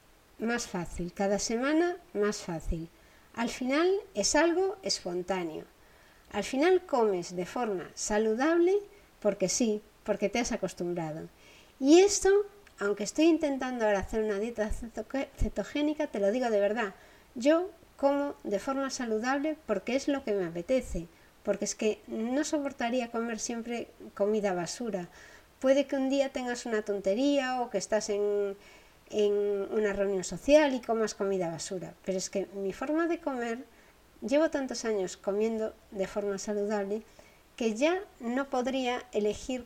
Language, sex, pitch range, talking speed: Spanish, female, 200-275 Hz, 145 wpm